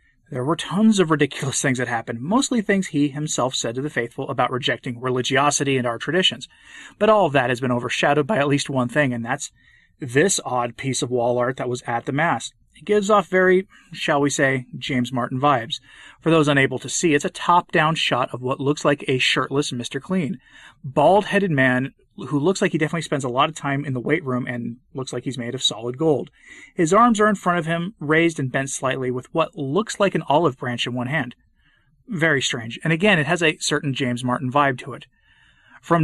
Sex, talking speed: male, 220 wpm